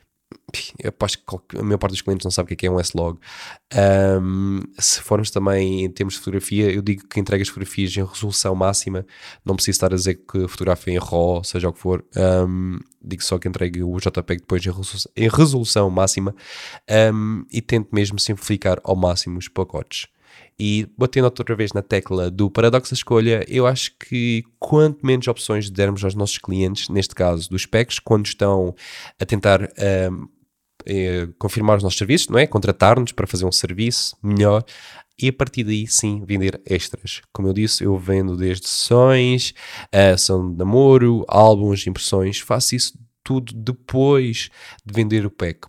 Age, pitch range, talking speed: 20-39, 95-115 Hz, 180 wpm